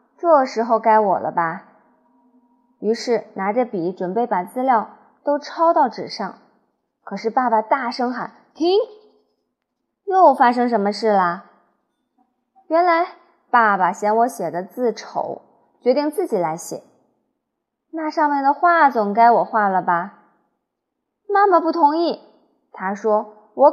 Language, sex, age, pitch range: Chinese, female, 20-39, 215-300 Hz